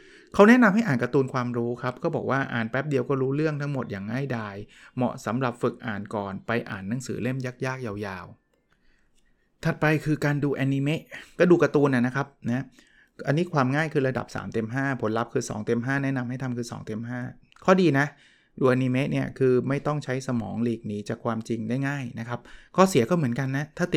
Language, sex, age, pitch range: Thai, male, 20-39, 120-145 Hz